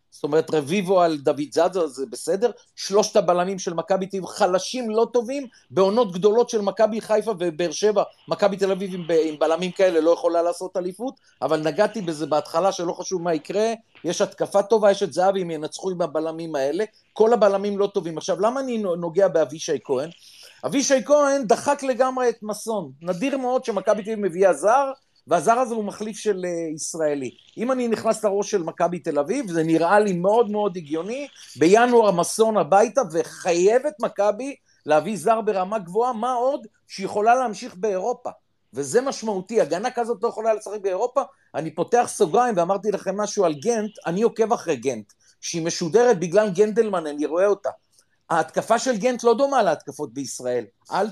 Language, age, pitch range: Hebrew, 40-59, 170-230 Hz